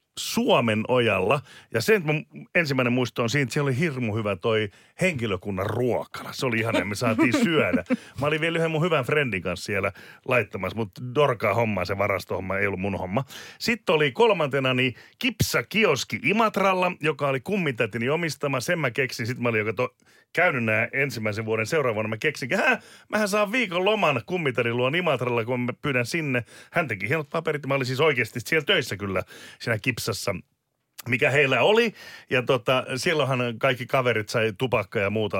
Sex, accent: male, native